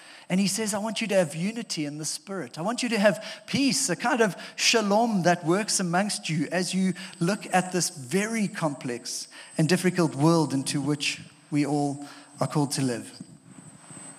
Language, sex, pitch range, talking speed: English, male, 155-200 Hz, 185 wpm